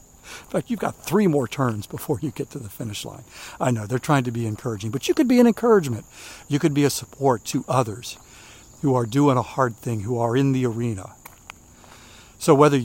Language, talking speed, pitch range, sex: English, 220 wpm, 115-150 Hz, male